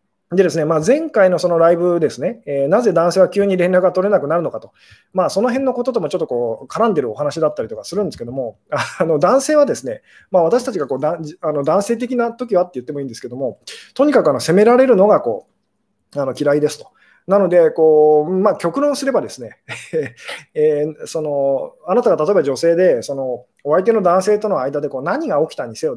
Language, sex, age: Japanese, male, 20-39